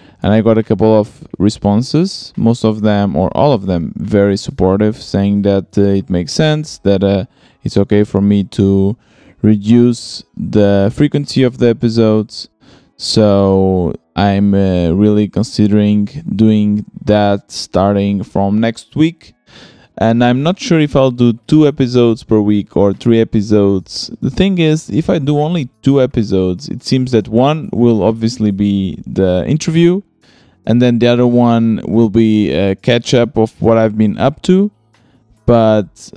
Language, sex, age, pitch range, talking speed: English, male, 20-39, 100-125 Hz, 155 wpm